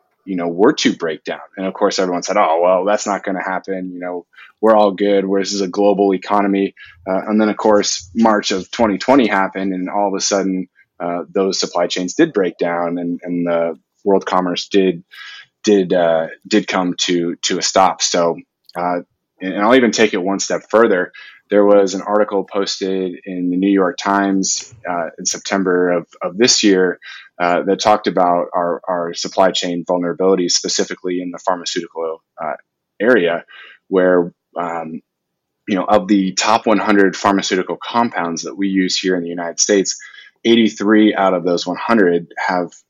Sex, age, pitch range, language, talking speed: male, 20-39, 90-105 Hz, English, 180 wpm